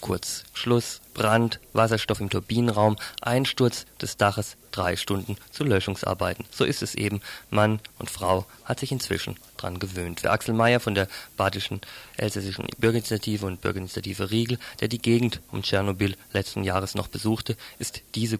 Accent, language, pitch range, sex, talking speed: German, German, 100-115 Hz, male, 155 wpm